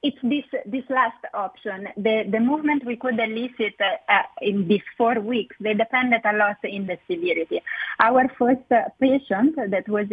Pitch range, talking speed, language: 205-265 Hz, 180 wpm, English